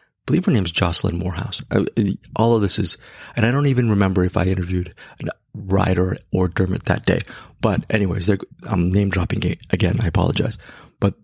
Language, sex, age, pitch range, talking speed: English, male, 30-49, 95-115 Hz, 185 wpm